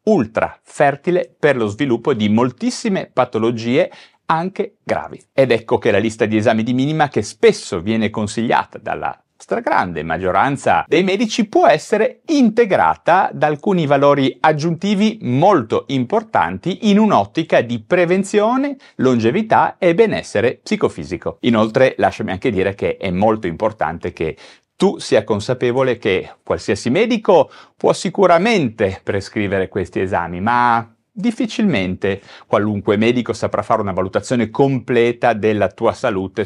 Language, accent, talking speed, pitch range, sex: Italian, native, 125 wpm, 110-180 Hz, male